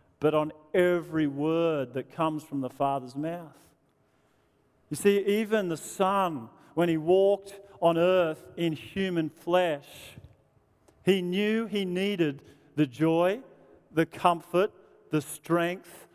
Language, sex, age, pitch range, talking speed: English, male, 40-59, 155-225 Hz, 125 wpm